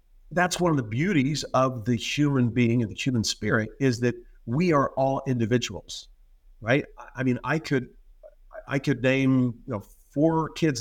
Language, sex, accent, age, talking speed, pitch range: English, male, American, 50-69, 160 wpm, 115-145 Hz